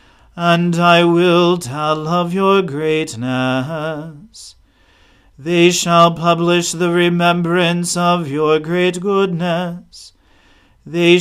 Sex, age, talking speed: male, 40-59, 90 wpm